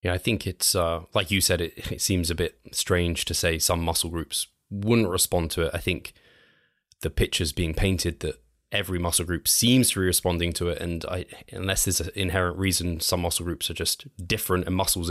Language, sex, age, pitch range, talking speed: English, male, 20-39, 85-95 Hz, 215 wpm